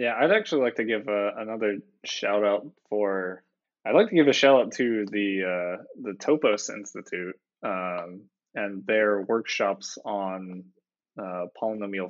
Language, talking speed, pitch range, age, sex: English, 155 wpm, 95-110 Hz, 20-39, male